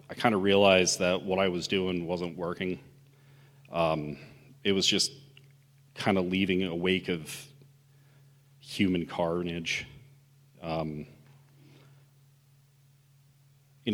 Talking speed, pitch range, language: 110 wpm, 90-140 Hz, English